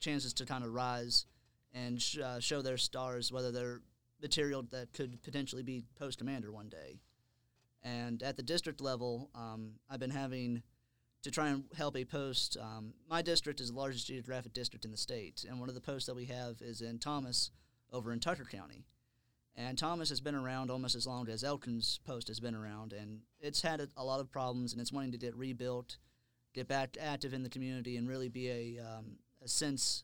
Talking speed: 200 wpm